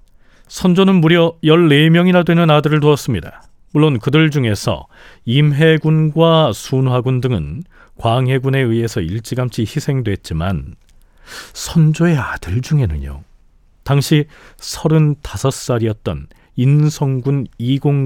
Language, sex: Korean, male